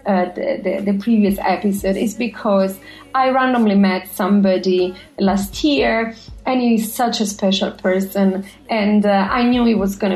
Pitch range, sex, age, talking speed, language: 195-245 Hz, female, 30-49, 160 wpm, English